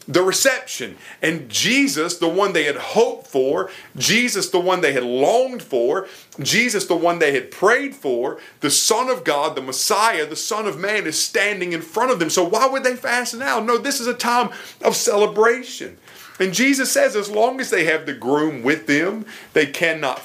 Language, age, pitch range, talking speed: English, 40-59, 140-215 Hz, 200 wpm